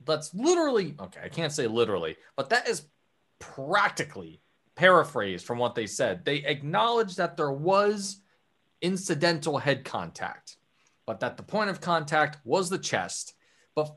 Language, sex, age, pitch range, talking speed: English, male, 20-39, 115-180 Hz, 145 wpm